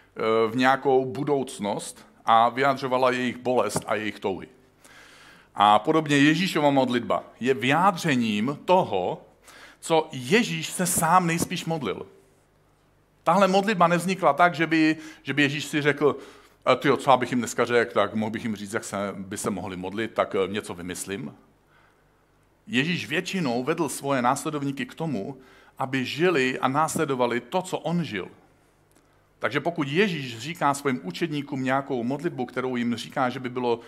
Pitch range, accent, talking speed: 120-155 Hz, native, 150 wpm